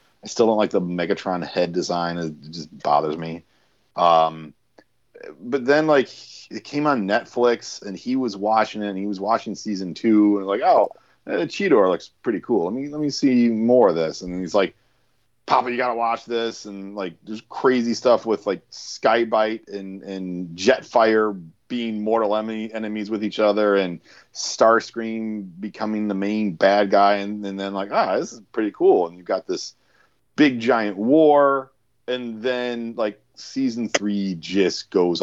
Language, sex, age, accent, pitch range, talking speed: English, male, 30-49, American, 95-120 Hz, 175 wpm